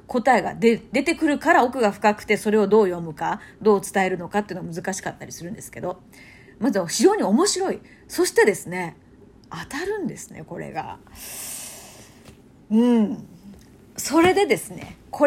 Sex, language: female, Japanese